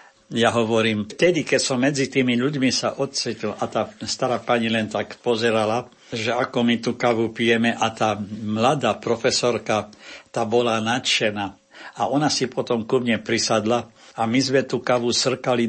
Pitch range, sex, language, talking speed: 110-125 Hz, male, Slovak, 165 wpm